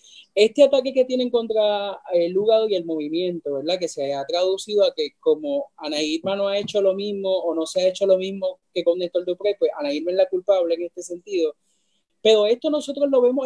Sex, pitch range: male, 175-225 Hz